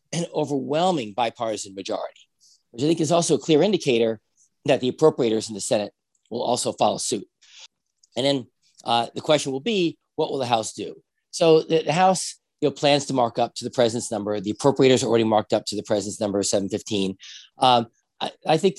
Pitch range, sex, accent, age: 110-140 Hz, male, American, 40-59